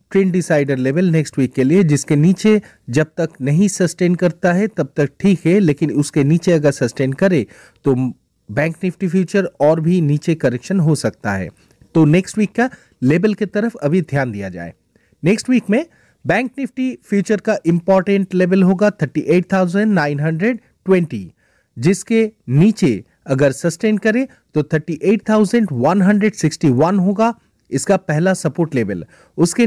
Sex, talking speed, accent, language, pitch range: male, 145 wpm, native, Hindi, 145-200 Hz